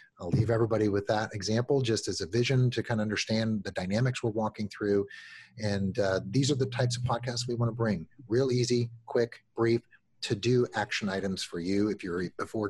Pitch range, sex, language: 100-125 Hz, male, English